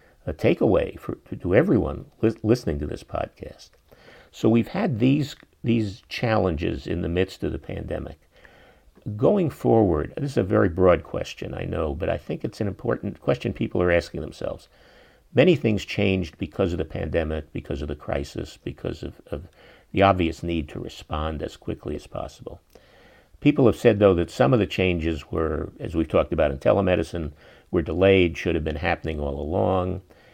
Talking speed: 175 wpm